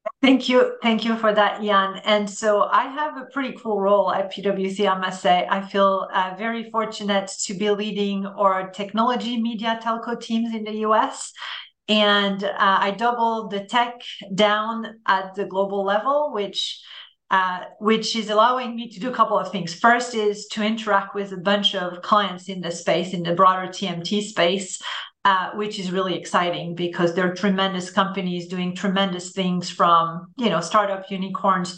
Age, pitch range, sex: 40-59, 190-220 Hz, female